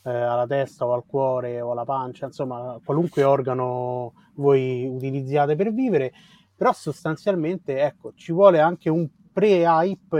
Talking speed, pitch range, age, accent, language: 135 wpm, 125-160 Hz, 30-49, native, Italian